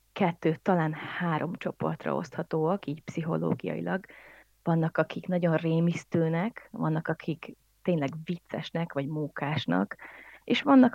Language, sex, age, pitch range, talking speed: Hungarian, female, 30-49, 155-185 Hz, 105 wpm